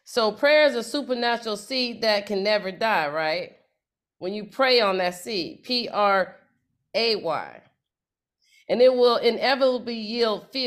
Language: English